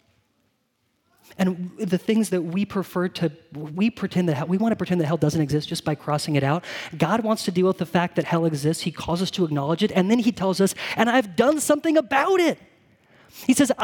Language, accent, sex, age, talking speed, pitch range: English, American, male, 30-49, 230 wpm, 175-235 Hz